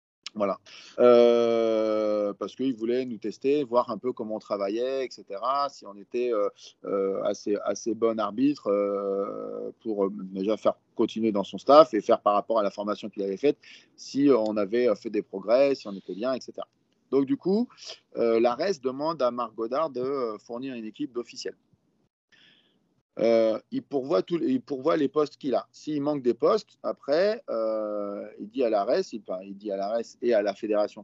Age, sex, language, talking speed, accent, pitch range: 30-49, male, French, 180 wpm, French, 105-145 Hz